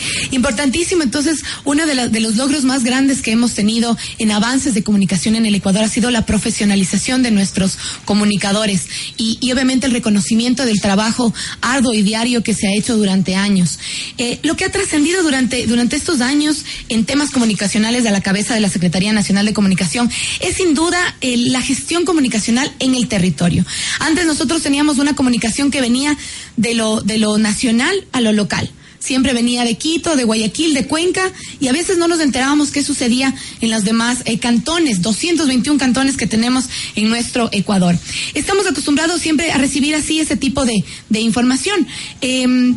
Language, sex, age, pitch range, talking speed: Spanish, female, 20-39, 220-295 Hz, 180 wpm